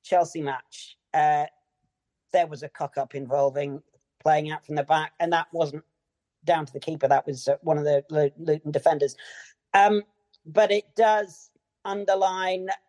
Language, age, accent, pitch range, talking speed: English, 40-59, British, 150-185 Hz, 155 wpm